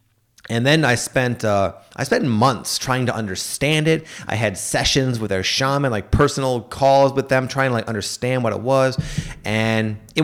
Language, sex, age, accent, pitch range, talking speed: English, male, 30-49, American, 100-130 Hz, 190 wpm